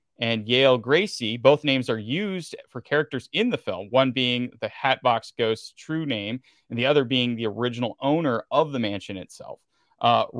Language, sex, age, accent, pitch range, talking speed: English, male, 30-49, American, 110-145 Hz, 180 wpm